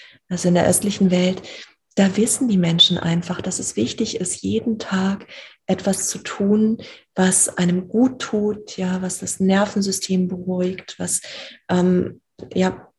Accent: German